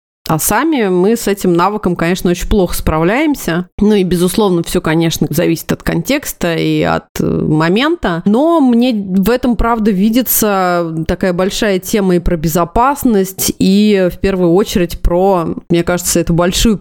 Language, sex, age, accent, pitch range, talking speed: Russian, female, 30-49, native, 165-195 Hz, 150 wpm